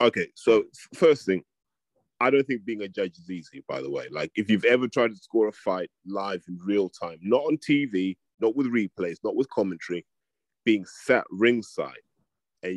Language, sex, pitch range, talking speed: English, male, 95-130 Hz, 195 wpm